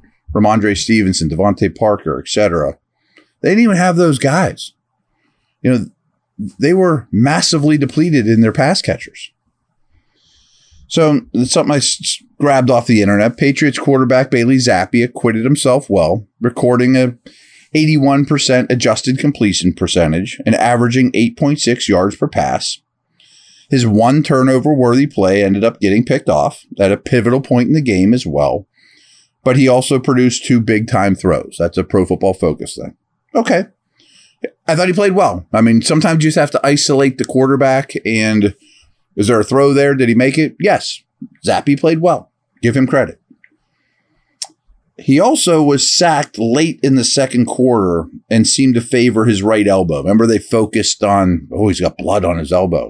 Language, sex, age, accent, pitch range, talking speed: English, male, 30-49, American, 105-140 Hz, 160 wpm